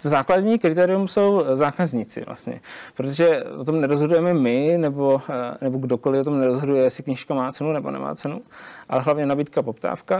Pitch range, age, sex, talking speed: 130-145 Hz, 20-39, male, 160 wpm